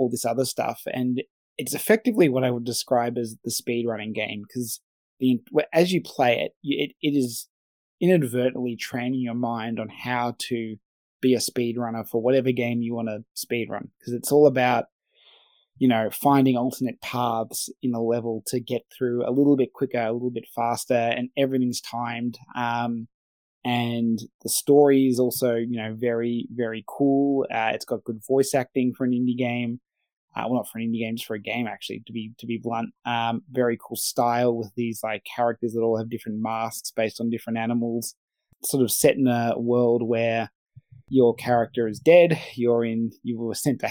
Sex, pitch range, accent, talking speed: male, 115-125 Hz, Australian, 195 wpm